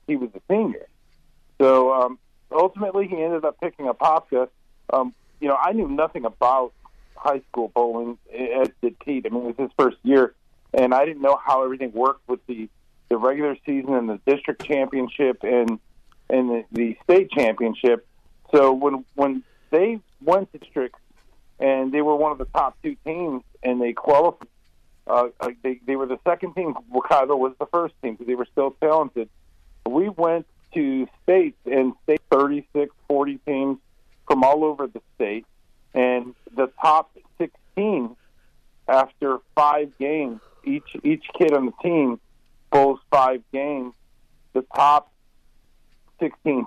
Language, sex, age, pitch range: English, male, 50-69, 125-150 Hz